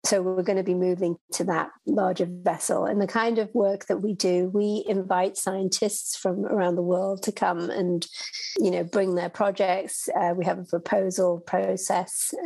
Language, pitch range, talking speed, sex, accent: English, 185-215 Hz, 190 wpm, female, British